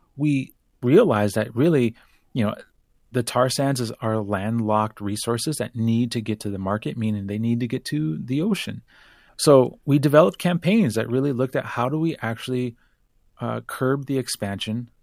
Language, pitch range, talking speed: English, 110-140 Hz, 170 wpm